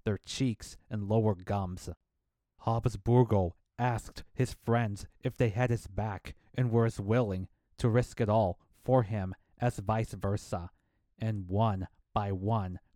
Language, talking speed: English, 145 wpm